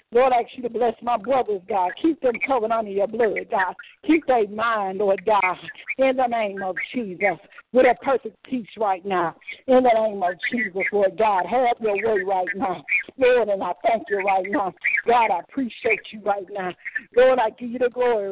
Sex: female